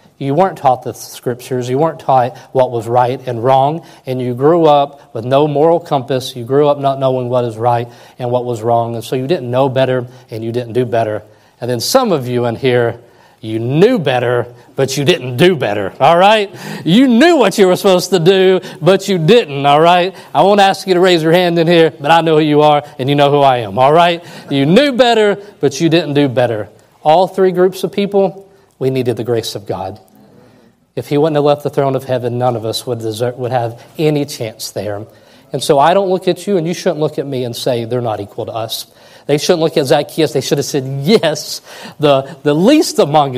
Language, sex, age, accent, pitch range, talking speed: English, male, 40-59, American, 125-175 Hz, 235 wpm